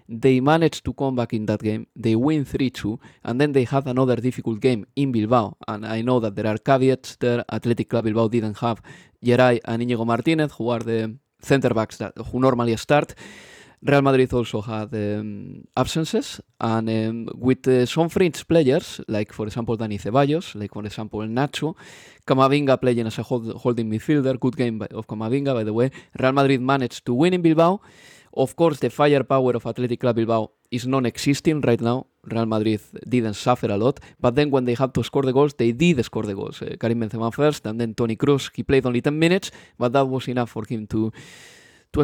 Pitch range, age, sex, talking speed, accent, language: 115-140 Hz, 20-39, male, 200 wpm, Spanish, English